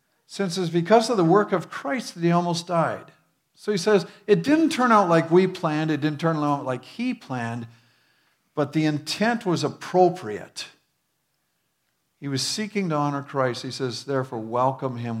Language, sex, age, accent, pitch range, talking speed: English, male, 50-69, American, 115-155 Hz, 180 wpm